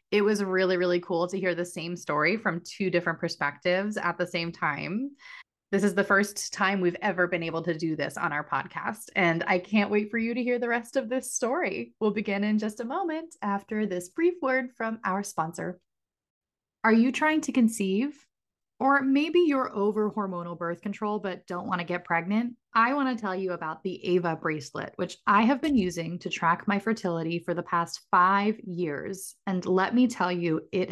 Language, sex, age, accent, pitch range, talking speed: English, female, 20-39, American, 175-220 Hz, 205 wpm